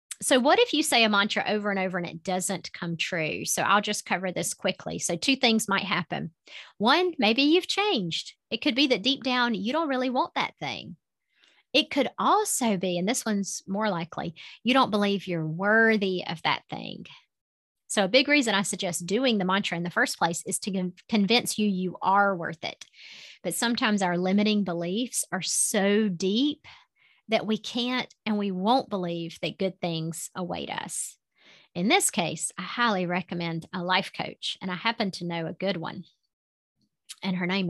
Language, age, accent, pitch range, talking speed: English, 30-49, American, 180-235 Hz, 190 wpm